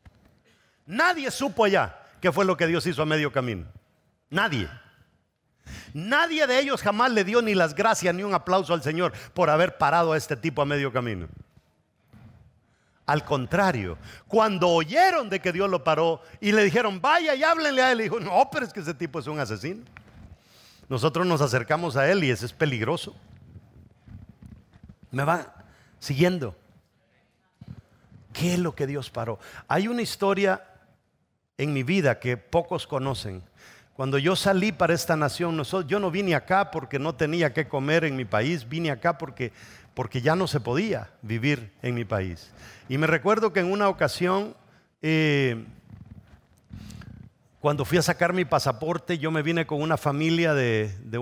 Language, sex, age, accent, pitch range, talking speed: English, male, 50-69, Mexican, 120-175 Hz, 170 wpm